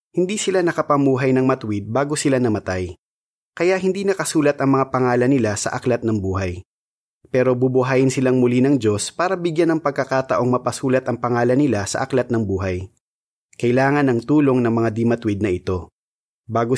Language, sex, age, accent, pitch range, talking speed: Filipino, male, 20-39, native, 110-140 Hz, 165 wpm